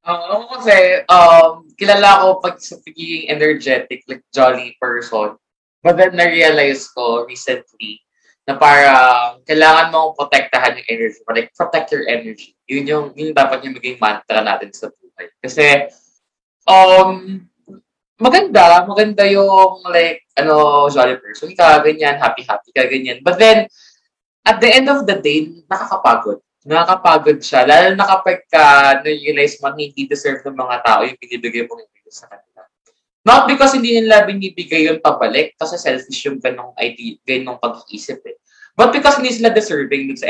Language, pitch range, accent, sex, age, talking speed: English, 135-215 Hz, Filipino, male, 20-39, 150 wpm